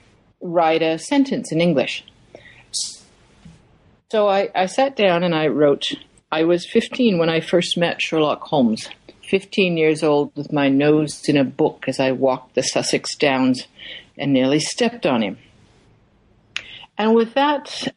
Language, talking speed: English, 150 wpm